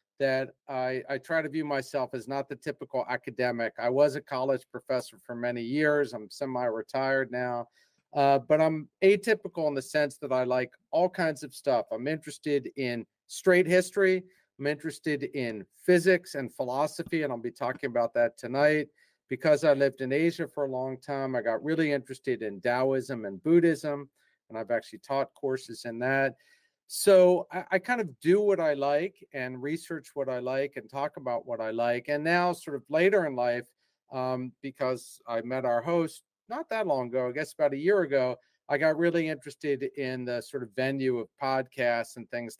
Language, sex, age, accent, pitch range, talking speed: English, male, 50-69, American, 125-155 Hz, 190 wpm